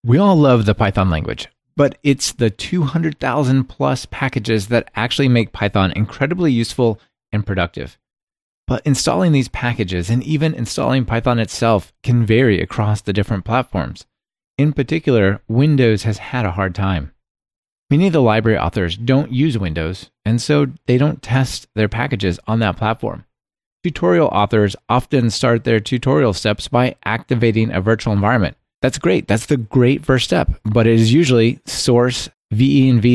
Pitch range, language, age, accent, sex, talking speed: 100-130 Hz, English, 30-49, American, male, 155 wpm